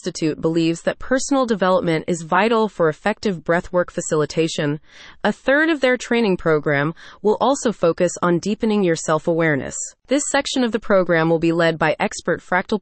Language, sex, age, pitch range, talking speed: English, female, 30-49, 170-240 Hz, 165 wpm